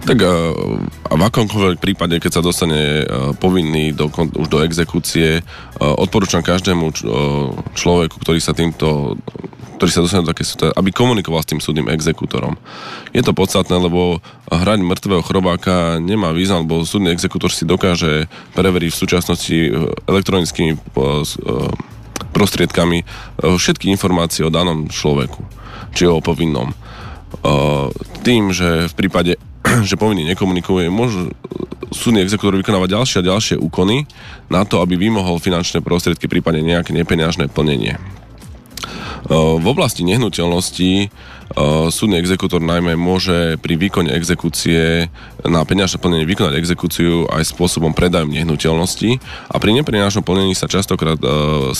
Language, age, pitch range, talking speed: Slovak, 20-39, 80-95 Hz, 125 wpm